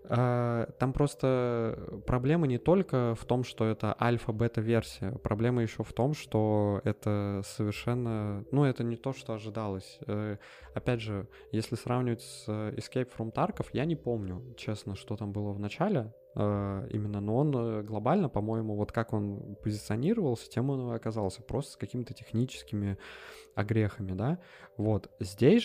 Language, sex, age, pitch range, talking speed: Russian, male, 20-39, 105-135 Hz, 145 wpm